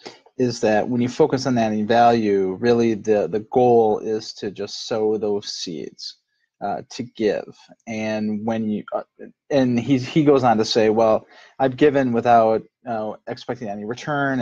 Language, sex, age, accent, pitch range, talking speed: English, male, 30-49, American, 105-120 Hz, 165 wpm